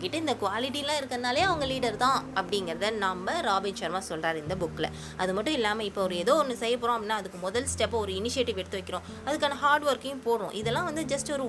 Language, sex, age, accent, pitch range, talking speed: Tamil, female, 20-39, native, 190-270 Hz, 205 wpm